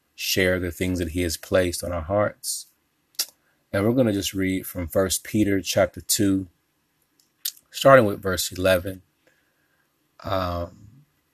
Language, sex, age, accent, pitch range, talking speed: English, male, 30-49, American, 90-105 Hz, 140 wpm